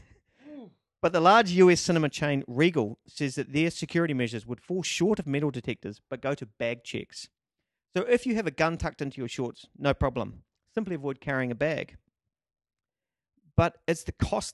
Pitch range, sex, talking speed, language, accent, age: 125-165 Hz, male, 180 wpm, English, Australian, 40-59